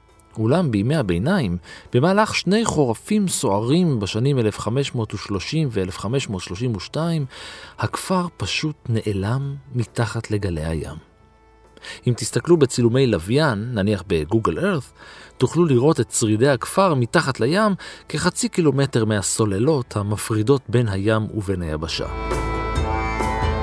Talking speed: 95 wpm